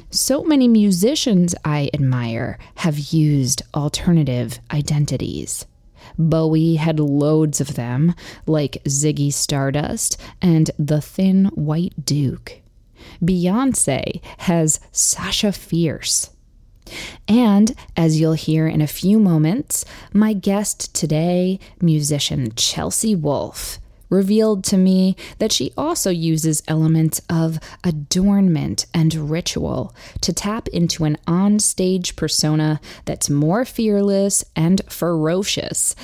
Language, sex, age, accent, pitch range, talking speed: English, female, 20-39, American, 150-190 Hz, 105 wpm